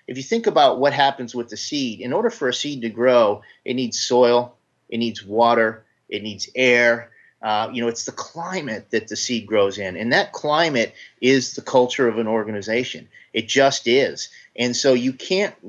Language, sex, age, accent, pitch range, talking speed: English, male, 30-49, American, 110-130 Hz, 200 wpm